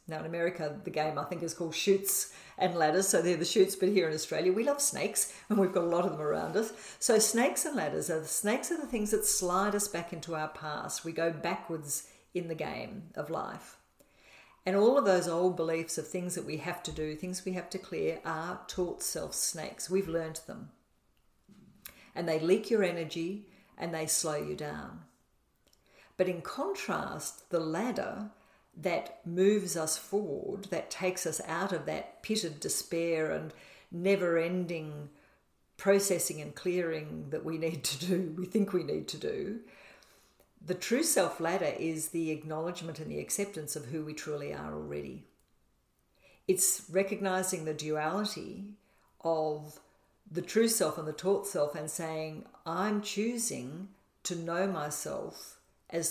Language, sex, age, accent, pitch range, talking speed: English, female, 50-69, Australian, 160-195 Hz, 170 wpm